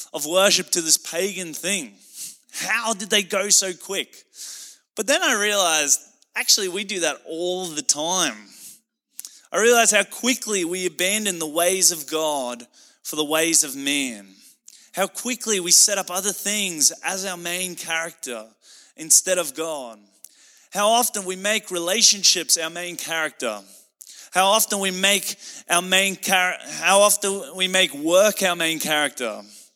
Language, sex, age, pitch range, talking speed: English, male, 20-39, 165-210 Hz, 150 wpm